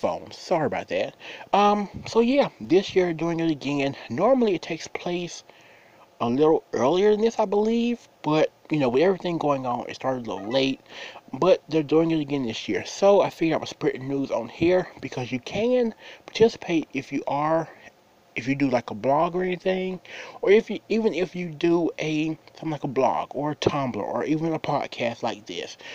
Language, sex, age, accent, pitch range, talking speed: English, male, 30-49, American, 130-185 Hz, 195 wpm